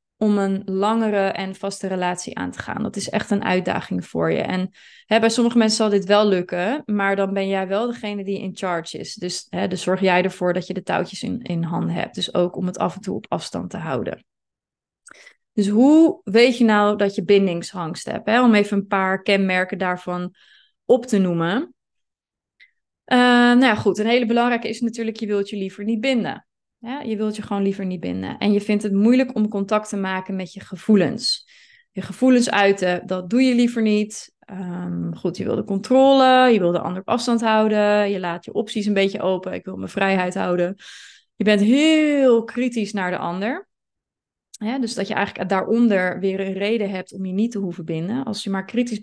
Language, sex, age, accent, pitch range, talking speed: Dutch, female, 20-39, Dutch, 190-225 Hz, 205 wpm